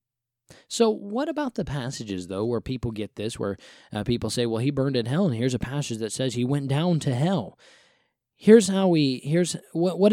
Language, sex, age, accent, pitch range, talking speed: English, male, 20-39, American, 115-140 Hz, 215 wpm